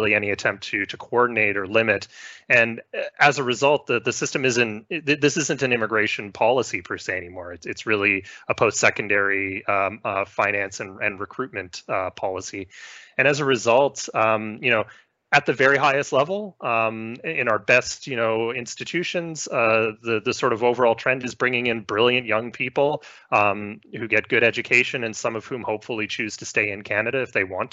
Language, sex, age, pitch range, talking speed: English, male, 30-49, 105-130 Hz, 190 wpm